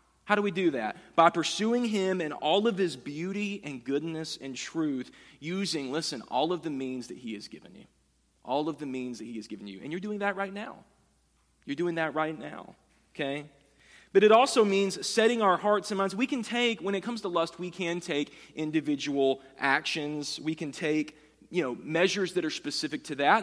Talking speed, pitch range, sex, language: 210 wpm, 130-175 Hz, male, English